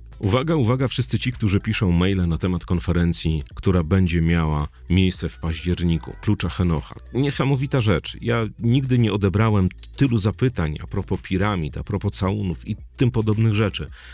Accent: native